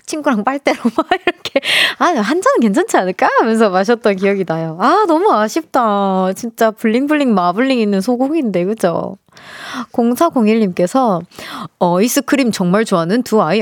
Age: 20-39